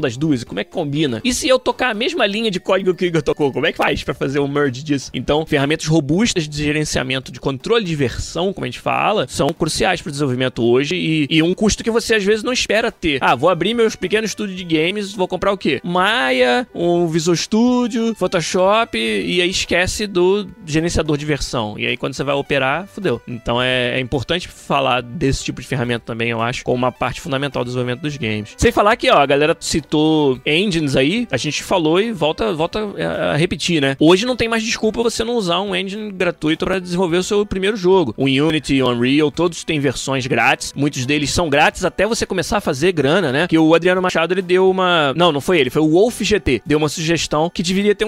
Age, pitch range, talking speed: 20-39, 145-205 Hz, 230 wpm